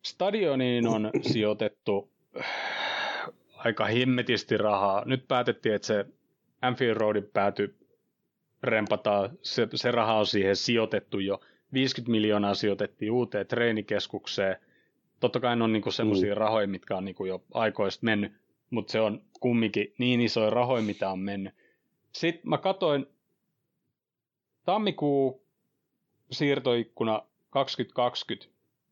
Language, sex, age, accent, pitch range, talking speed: Finnish, male, 30-49, native, 105-125 Hz, 115 wpm